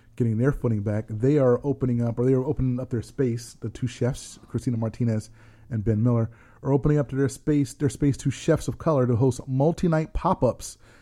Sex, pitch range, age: male, 110-135 Hz, 30-49